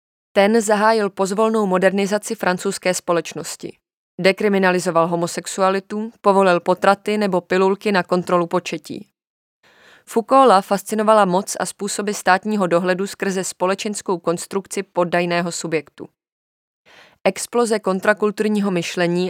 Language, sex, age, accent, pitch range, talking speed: Czech, female, 20-39, native, 175-200 Hz, 95 wpm